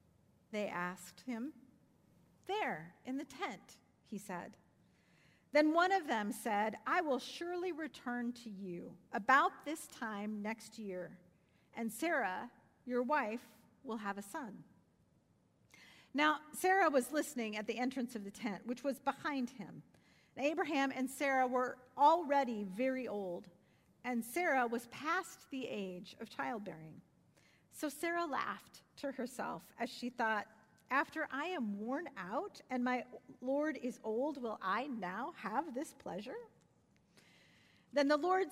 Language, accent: English, American